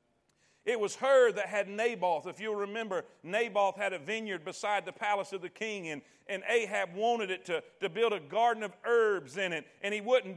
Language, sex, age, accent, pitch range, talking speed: English, male, 40-59, American, 185-230 Hz, 210 wpm